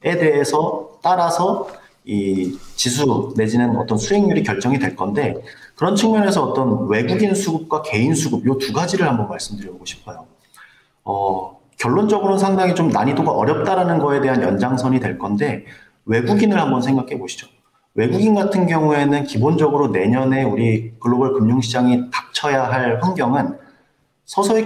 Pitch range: 120-175 Hz